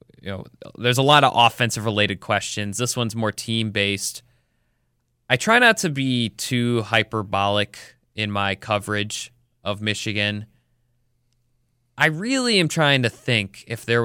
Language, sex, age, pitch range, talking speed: English, male, 20-39, 105-120 Hz, 145 wpm